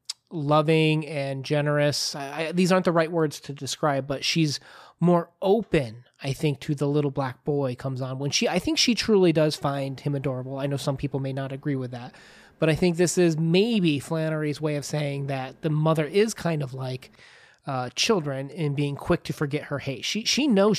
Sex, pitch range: male, 140-165 Hz